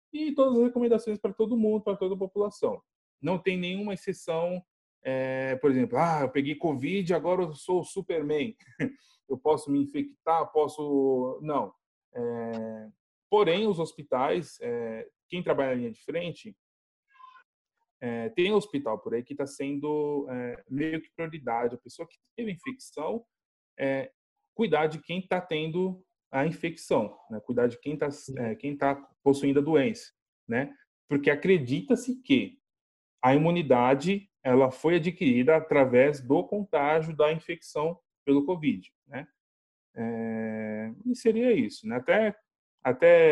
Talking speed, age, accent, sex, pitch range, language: 145 wpm, 20-39, Brazilian, male, 130-200 Hz, Portuguese